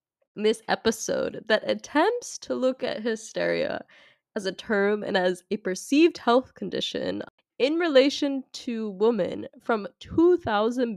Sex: female